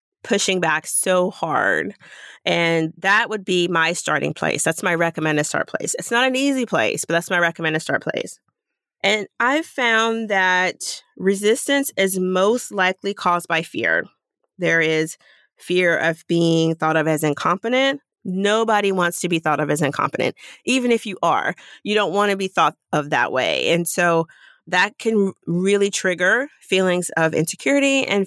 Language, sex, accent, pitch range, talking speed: English, female, American, 165-215 Hz, 165 wpm